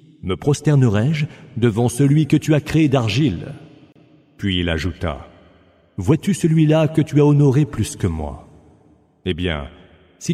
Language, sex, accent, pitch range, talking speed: English, male, French, 95-145 Hz, 140 wpm